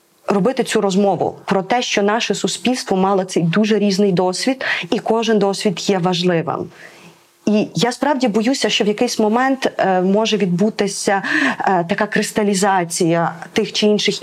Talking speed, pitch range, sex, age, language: 140 wpm, 180-215 Hz, female, 20-39, Ukrainian